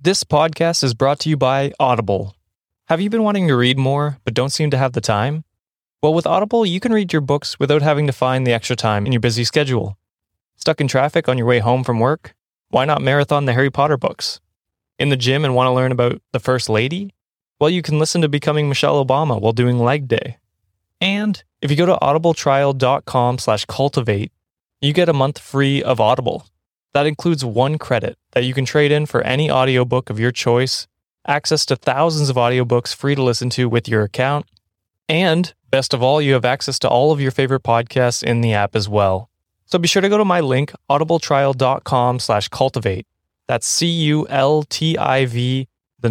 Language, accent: English, American